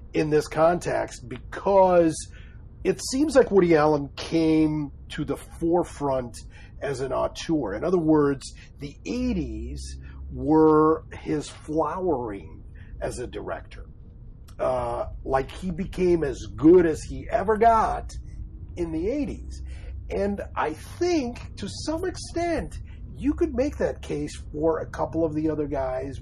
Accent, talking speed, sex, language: American, 135 wpm, male, English